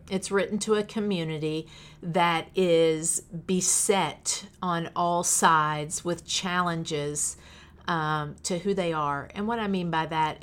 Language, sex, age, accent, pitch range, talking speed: English, female, 50-69, American, 155-185 Hz, 140 wpm